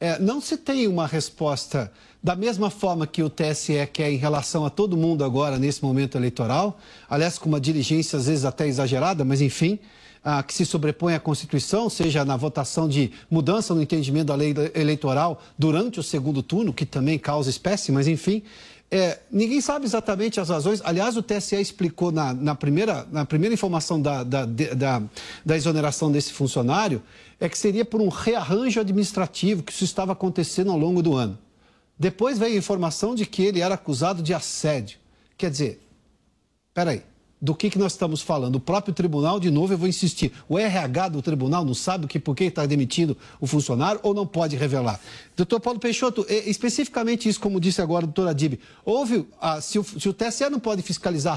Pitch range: 150-200 Hz